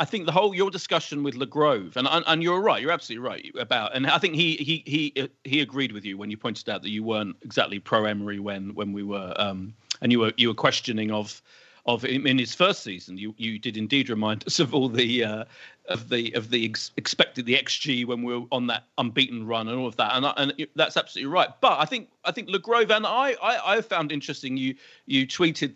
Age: 40-59